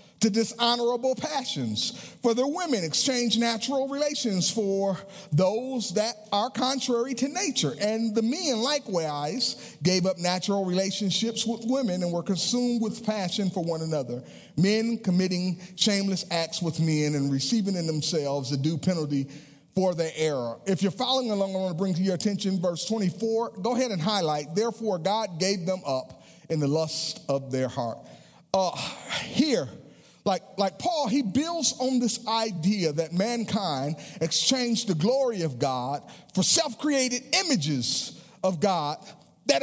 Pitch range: 185-285 Hz